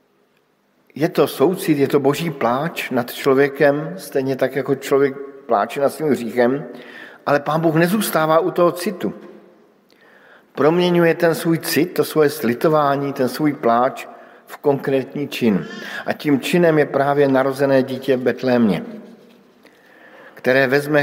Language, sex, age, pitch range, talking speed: Slovak, male, 50-69, 120-160 Hz, 135 wpm